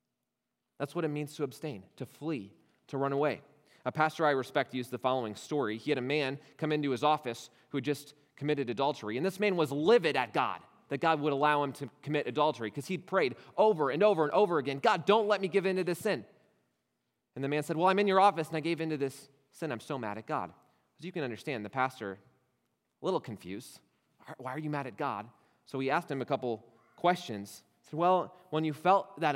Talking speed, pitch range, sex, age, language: 230 wpm, 120-155 Hz, male, 30-49, English